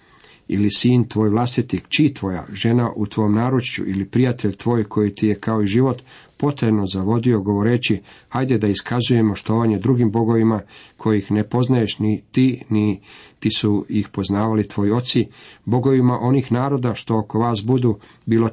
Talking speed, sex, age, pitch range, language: 155 wpm, male, 50-69, 105-120 Hz, Croatian